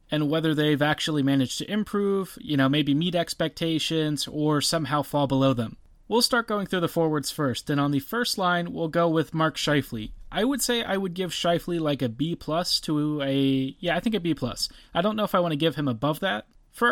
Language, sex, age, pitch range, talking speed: English, male, 30-49, 145-180 Hz, 225 wpm